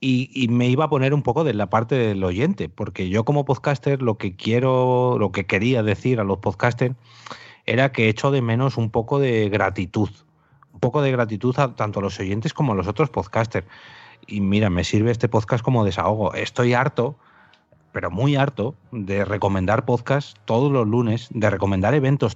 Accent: Spanish